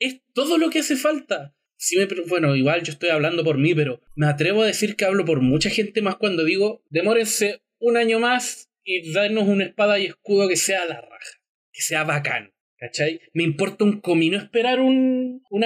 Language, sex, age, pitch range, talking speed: English, male, 20-39, 155-225 Hz, 205 wpm